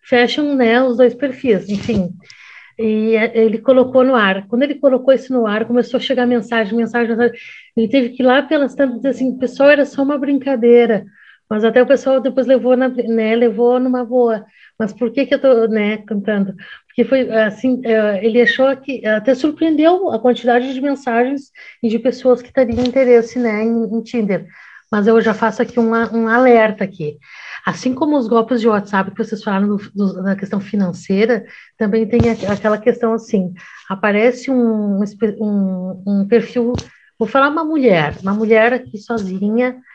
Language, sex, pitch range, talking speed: Portuguese, female, 215-255 Hz, 175 wpm